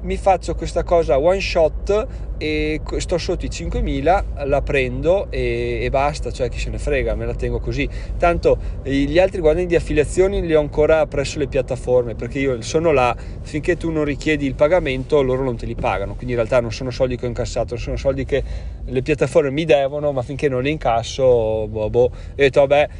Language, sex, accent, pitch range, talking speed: Italian, male, native, 125-170 Hz, 205 wpm